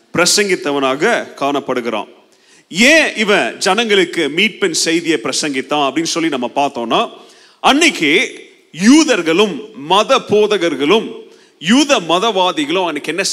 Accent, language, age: native, Tamil, 30-49